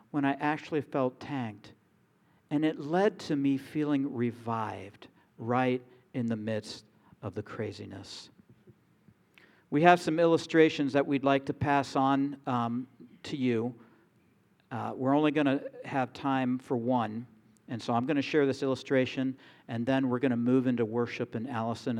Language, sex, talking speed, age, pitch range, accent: English, male, 160 wpm, 50-69, 120-165 Hz, American